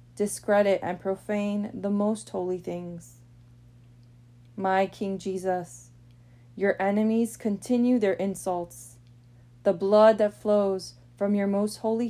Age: 20-39